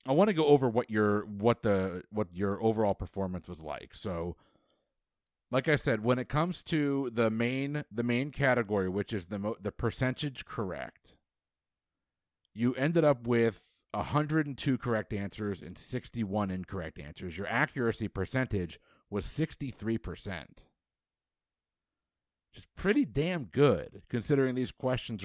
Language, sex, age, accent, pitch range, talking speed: English, male, 50-69, American, 95-130 Hz, 140 wpm